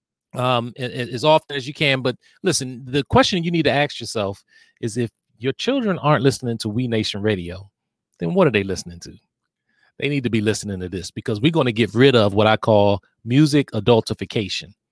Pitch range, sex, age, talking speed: 120-170 Hz, male, 40-59, 200 wpm